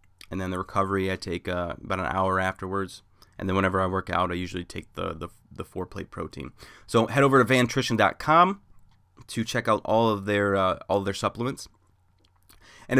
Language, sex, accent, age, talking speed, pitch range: English, male, American, 20-39, 200 wpm, 95-120 Hz